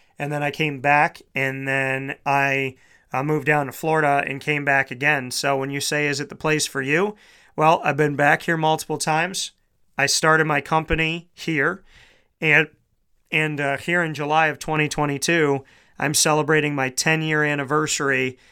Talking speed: 170 wpm